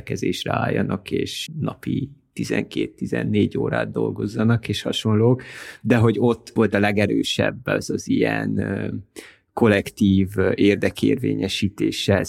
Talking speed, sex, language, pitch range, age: 95 wpm, male, Hungarian, 95-105 Hz, 30-49